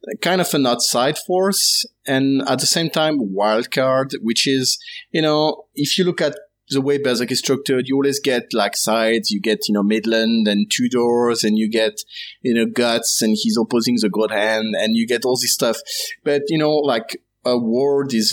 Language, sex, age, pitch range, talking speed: English, male, 30-49, 110-145 Hz, 205 wpm